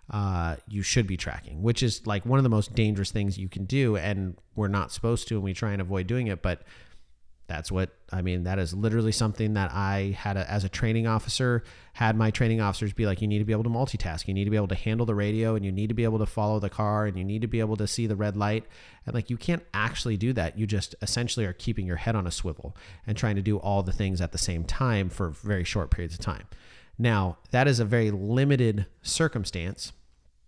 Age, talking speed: 30-49, 255 wpm